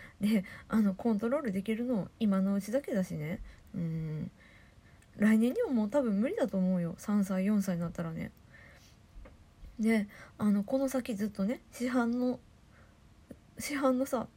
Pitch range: 190-245 Hz